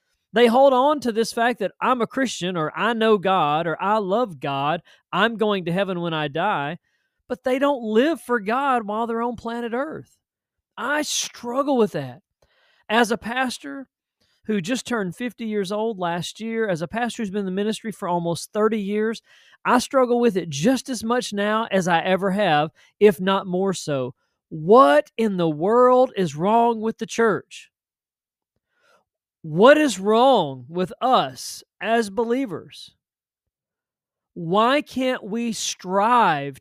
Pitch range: 160-240 Hz